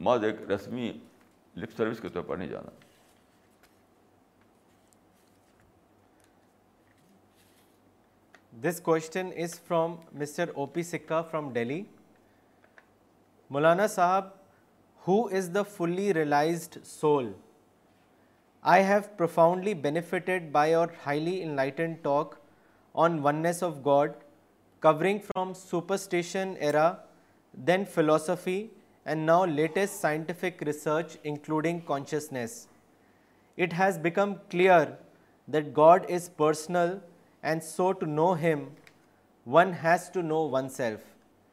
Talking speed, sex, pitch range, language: 90 wpm, male, 150-180 Hz, Urdu